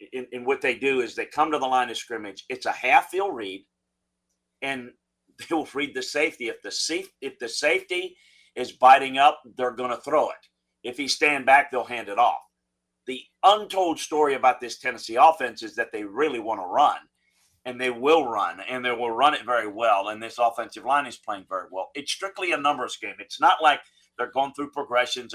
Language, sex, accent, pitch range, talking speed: English, male, American, 115-150 Hz, 215 wpm